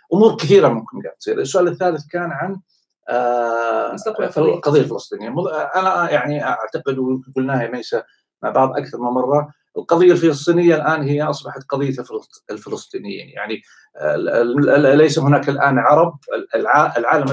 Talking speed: 120 wpm